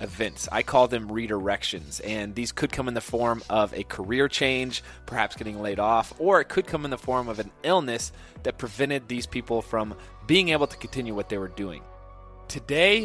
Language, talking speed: English, 200 wpm